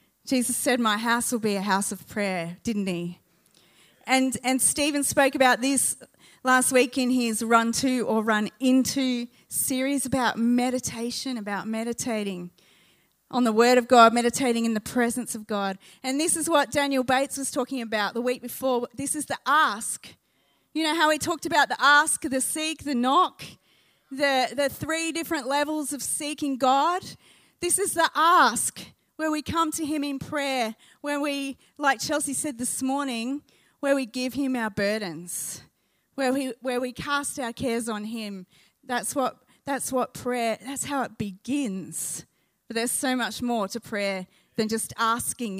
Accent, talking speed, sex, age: Australian, 170 wpm, female, 30-49